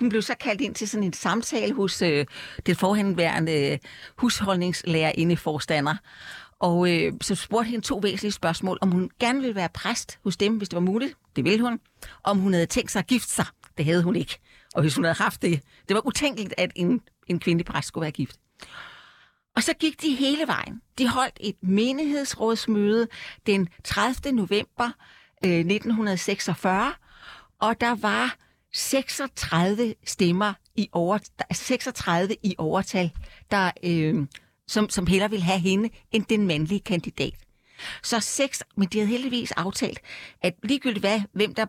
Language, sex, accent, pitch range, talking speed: Danish, female, native, 180-240 Hz, 170 wpm